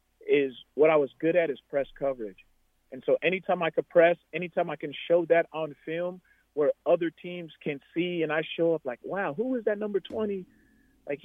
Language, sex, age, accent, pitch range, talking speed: English, male, 40-59, American, 130-180 Hz, 210 wpm